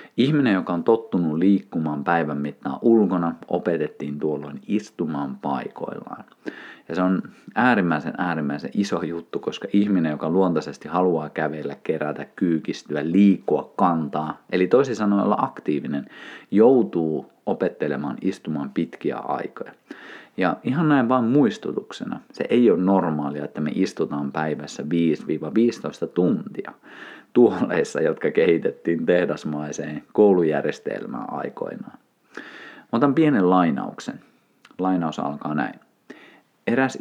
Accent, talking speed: native, 110 wpm